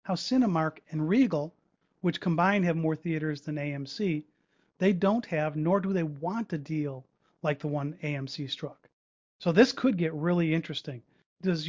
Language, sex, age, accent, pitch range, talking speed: English, male, 40-59, American, 145-170 Hz, 165 wpm